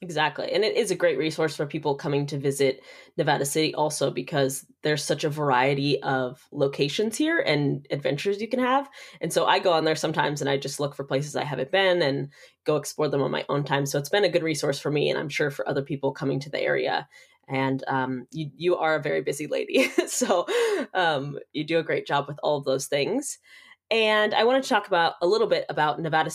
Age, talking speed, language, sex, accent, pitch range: 20-39, 230 wpm, English, female, American, 145-180 Hz